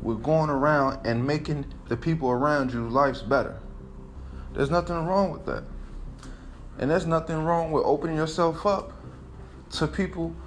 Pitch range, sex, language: 105-170 Hz, male, English